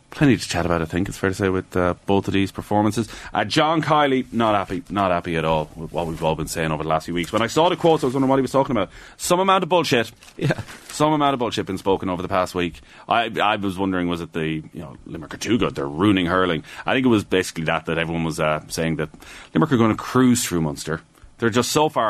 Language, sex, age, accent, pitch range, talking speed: English, male, 30-49, Irish, 95-135 Hz, 280 wpm